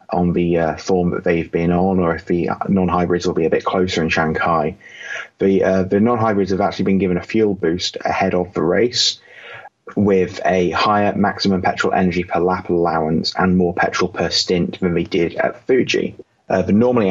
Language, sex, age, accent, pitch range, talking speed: English, male, 20-39, British, 90-100 Hz, 195 wpm